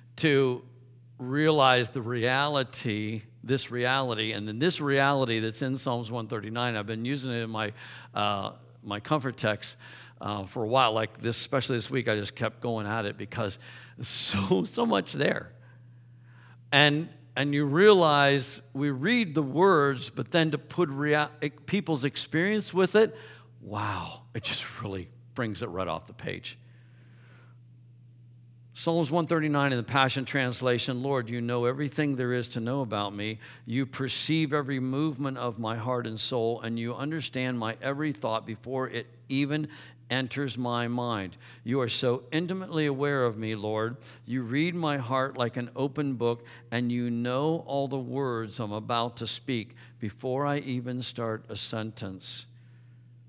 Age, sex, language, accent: 60-79, male, English, American